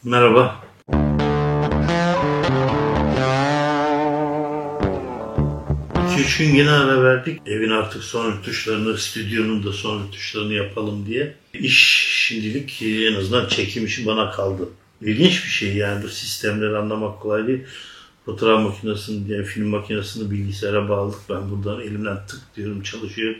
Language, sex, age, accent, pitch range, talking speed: Turkish, male, 60-79, native, 100-115 Hz, 120 wpm